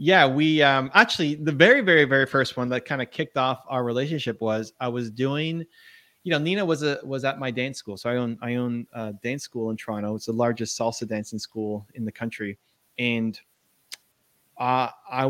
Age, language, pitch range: 30-49, English, 120-145 Hz